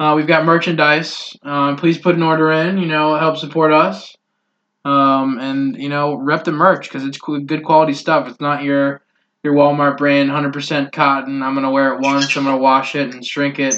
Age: 20-39